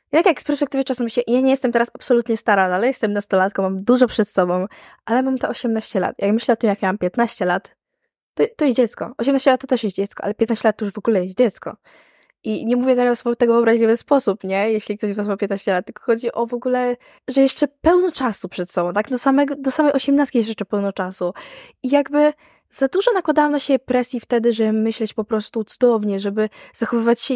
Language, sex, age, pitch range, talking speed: Polish, female, 10-29, 205-255 Hz, 235 wpm